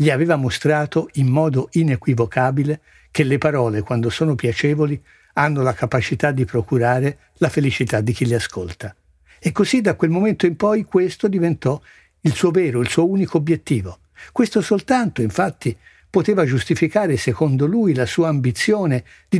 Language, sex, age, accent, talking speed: Italian, male, 60-79, native, 155 wpm